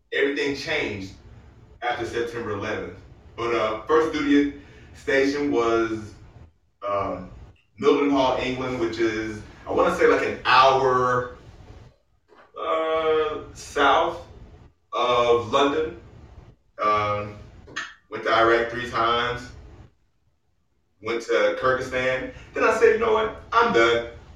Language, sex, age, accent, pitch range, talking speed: English, male, 30-49, American, 105-140 Hz, 115 wpm